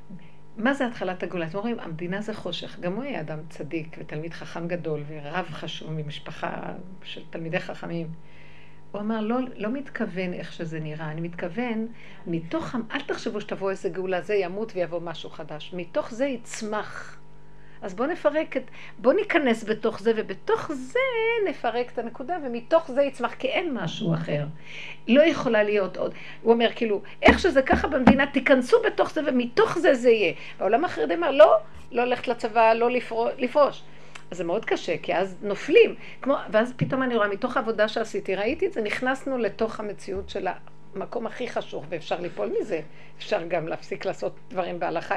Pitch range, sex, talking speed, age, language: 190-255 Hz, female, 170 wpm, 50-69, Hebrew